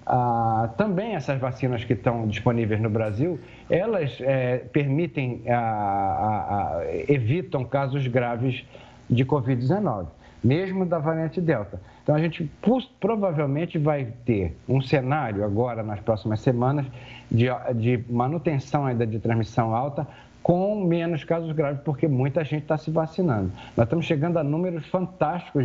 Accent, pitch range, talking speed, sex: Brazilian, 120-175 Hz, 140 wpm, male